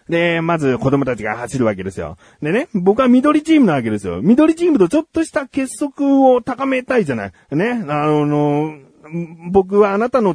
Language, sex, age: Japanese, male, 40-59